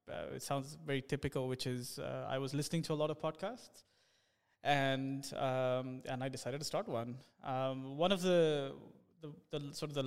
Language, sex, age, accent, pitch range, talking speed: English, male, 20-39, Indian, 125-145 Hz, 195 wpm